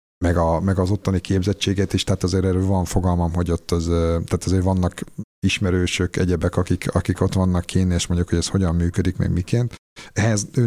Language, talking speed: Hungarian, 195 wpm